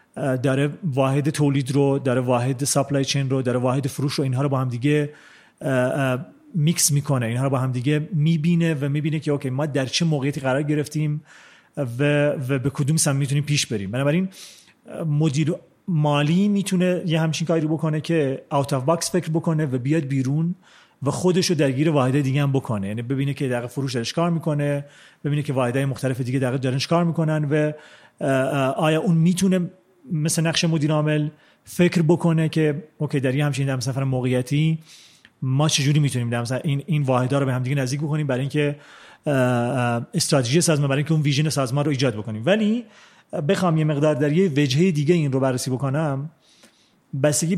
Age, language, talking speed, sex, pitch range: 40-59, Persian, 170 wpm, male, 135-165 Hz